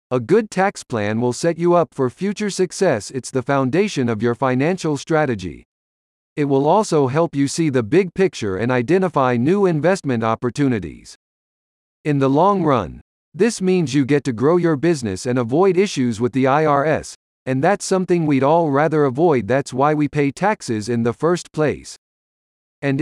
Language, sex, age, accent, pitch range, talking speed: English, male, 50-69, American, 125-175 Hz, 175 wpm